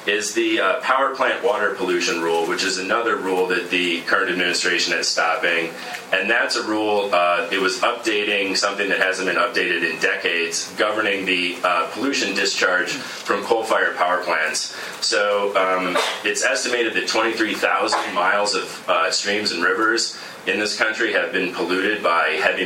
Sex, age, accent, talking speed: male, 30-49, American, 165 wpm